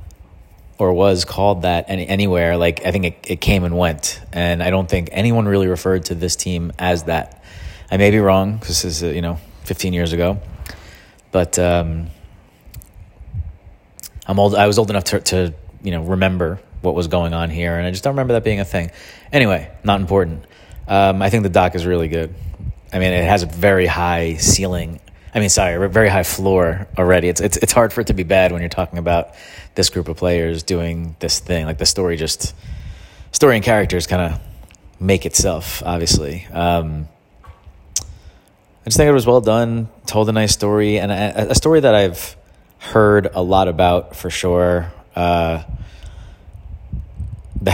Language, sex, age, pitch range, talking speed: English, male, 30-49, 85-95 Hz, 190 wpm